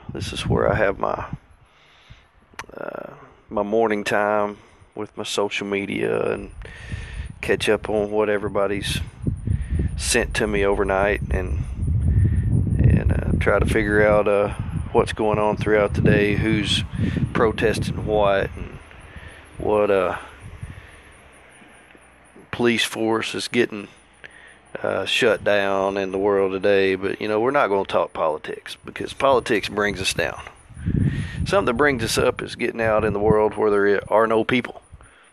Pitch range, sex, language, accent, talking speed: 95-105 Hz, male, English, American, 145 wpm